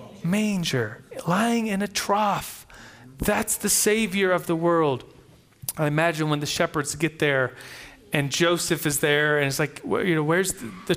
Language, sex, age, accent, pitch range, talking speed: English, male, 30-49, American, 160-210 Hz, 165 wpm